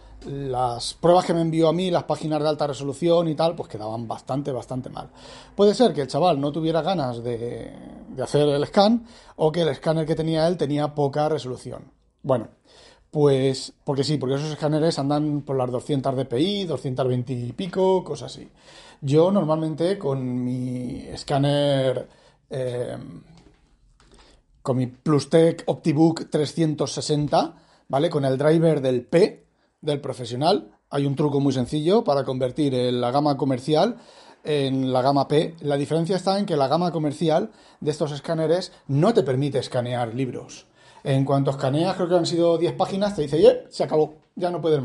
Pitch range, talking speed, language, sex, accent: 135-160 Hz, 165 wpm, Spanish, male, Spanish